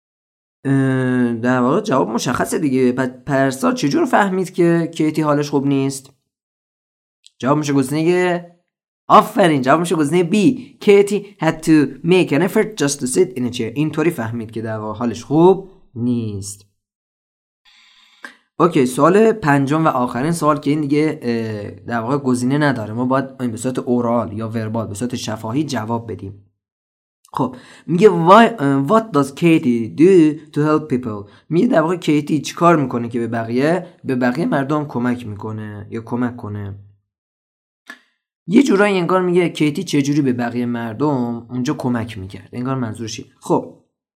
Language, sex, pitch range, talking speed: Persian, male, 115-155 Hz, 140 wpm